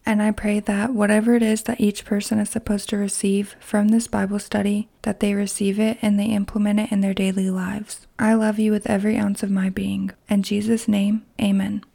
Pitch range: 205-230 Hz